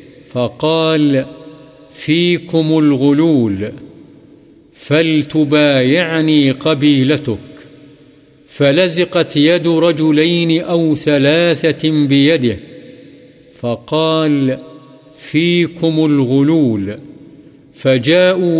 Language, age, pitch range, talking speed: Urdu, 50-69, 130-160 Hz, 50 wpm